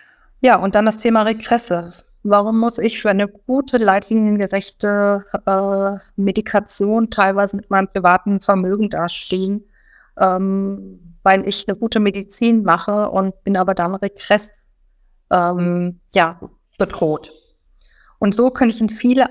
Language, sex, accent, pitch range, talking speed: German, female, German, 190-215 Hz, 130 wpm